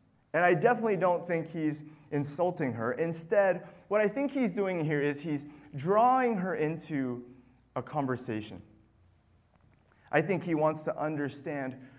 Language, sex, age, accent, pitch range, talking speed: English, male, 30-49, American, 125-180 Hz, 140 wpm